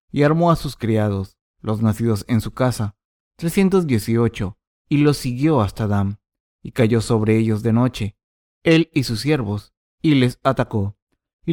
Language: Spanish